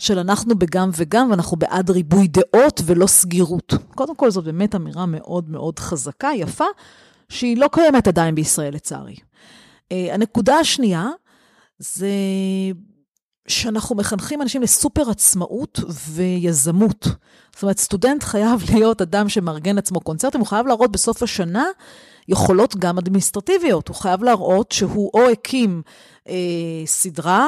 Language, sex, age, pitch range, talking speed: Hebrew, female, 40-59, 175-230 Hz, 130 wpm